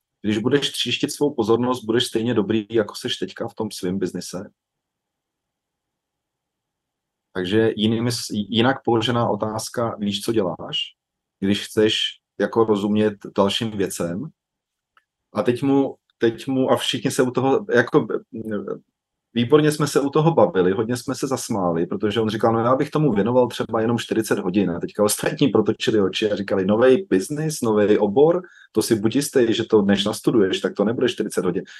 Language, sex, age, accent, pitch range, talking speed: Czech, male, 30-49, native, 105-130 Hz, 160 wpm